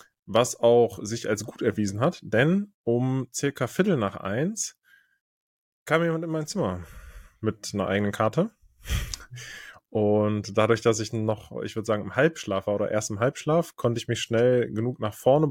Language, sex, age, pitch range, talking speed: German, male, 20-39, 110-150 Hz, 170 wpm